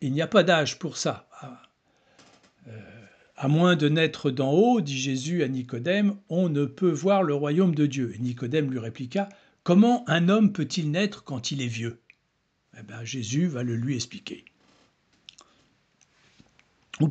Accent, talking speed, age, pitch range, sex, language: French, 160 wpm, 60-79, 130-195 Hz, male, French